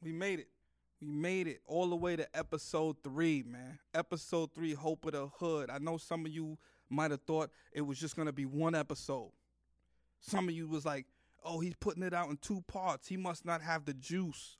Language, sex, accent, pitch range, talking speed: English, male, American, 130-160 Hz, 220 wpm